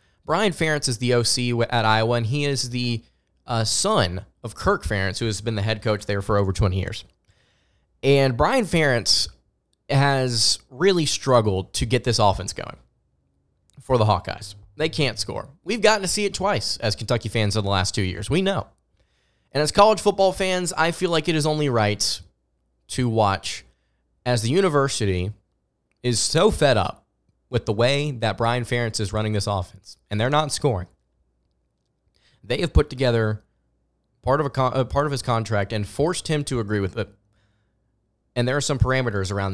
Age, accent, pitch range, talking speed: 20-39, American, 105-135 Hz, 180 wpm